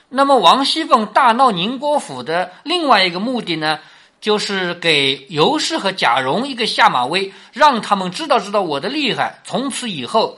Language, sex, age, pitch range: Chinese, male, 50-69, 145-240 Hz